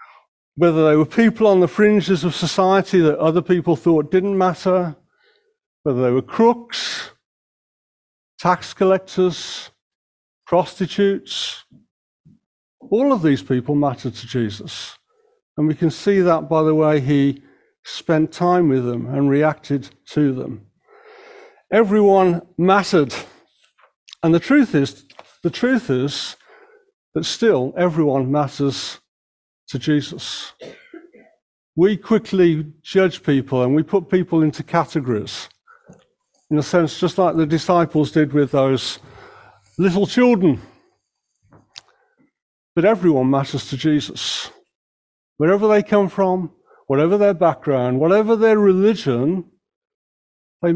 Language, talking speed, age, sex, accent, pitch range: English, 115 wpm, 50-69, male, British, 140-195 Hz